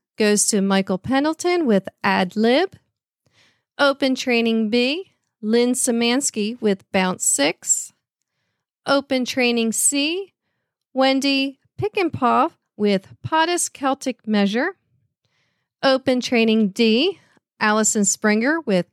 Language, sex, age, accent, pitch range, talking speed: English, female, 40-59, American, 215-295 Hz, 95 wpm